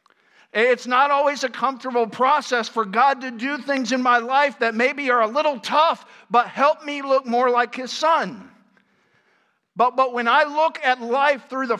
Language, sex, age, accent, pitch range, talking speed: English, male, 50-69, American, 200-275 Hz, 190 wpm